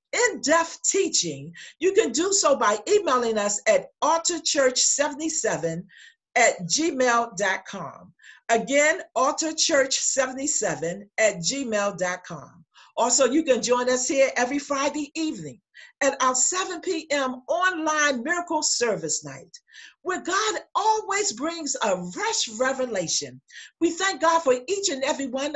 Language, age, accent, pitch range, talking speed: English, 50-69, American, 215-335 Hz, 115 wpm